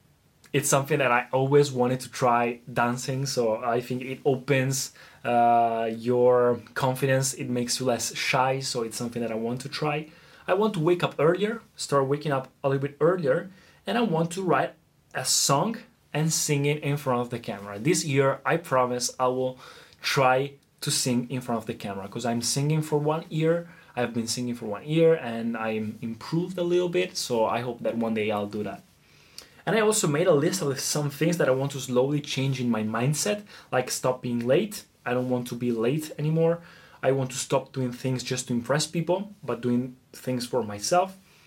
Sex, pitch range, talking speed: male, 120-155 Hz, 205 wpm